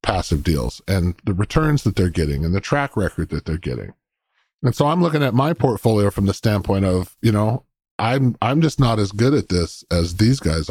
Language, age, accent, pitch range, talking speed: English, 30-49, American, 95-130 Hz, 220 wpm